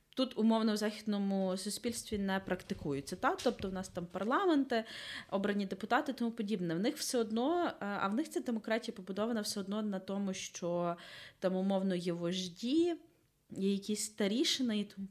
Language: Ukrainian